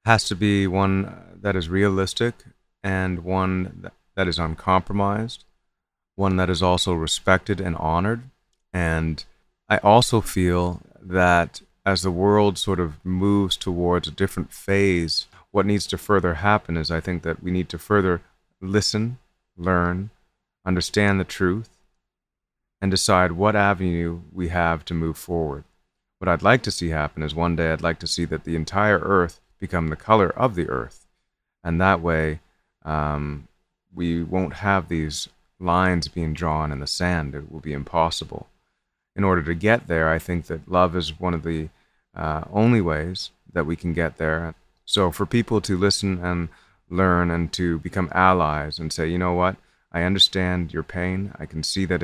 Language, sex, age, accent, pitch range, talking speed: English, male, 30-49, American, 80-95 Hz, 170 wpm